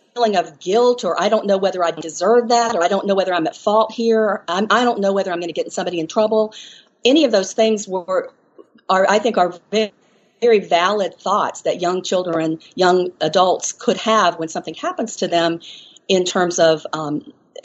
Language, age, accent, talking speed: English, 50-69, American, 205 wpm